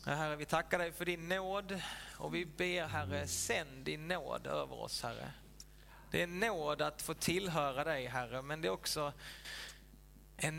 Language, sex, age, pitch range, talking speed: Swedish, male, 20-39, 140-175 Hz, 175 wpm